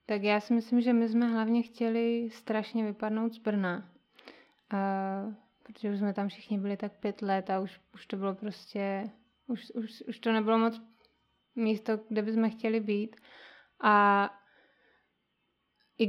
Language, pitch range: Czech, 205-225 Hz